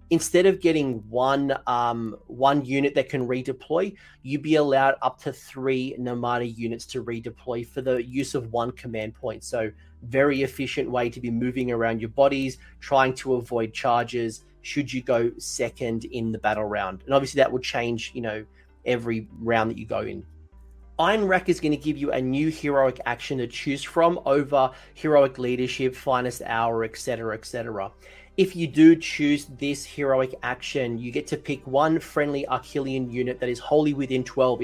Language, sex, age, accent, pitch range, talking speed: English, male, 30-49, Australian, 120-145 Hz, 180 wpm